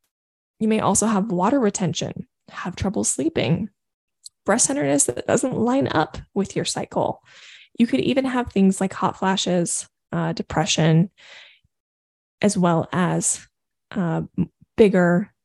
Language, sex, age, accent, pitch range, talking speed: English, female, 20-39, American, 180-225 Hz, 130 wpm